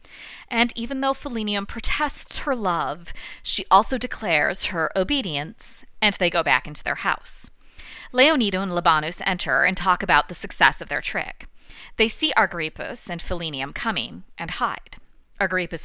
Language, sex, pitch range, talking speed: English, female, 170-235 Hz, 150 wpm